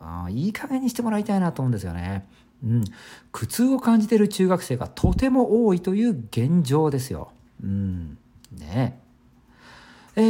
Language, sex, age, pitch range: Japanese, male, 50-69, 120-195 Hz